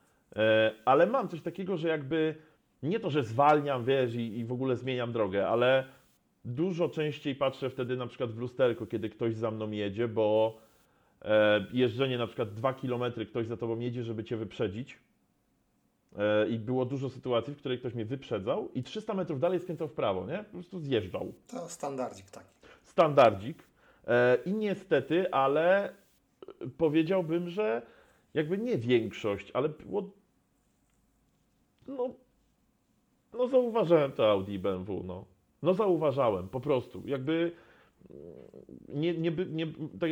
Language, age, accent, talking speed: Polish, 30-49, native, 140 wpm